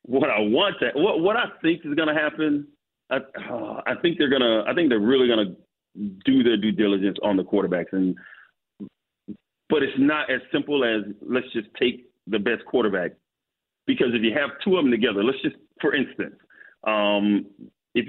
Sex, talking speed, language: male, 200 wpm, English